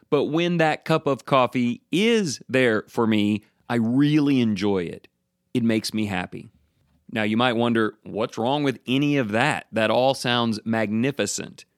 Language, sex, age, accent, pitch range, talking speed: English, male, 30-49, American, 110-150 Hz, 165 wpm